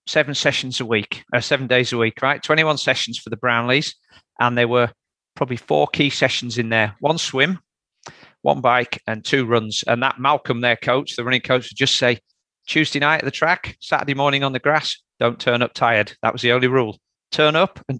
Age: 40-59